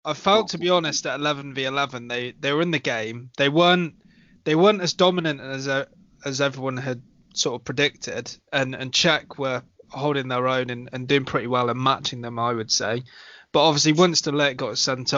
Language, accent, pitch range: English, British, 130-160 Hz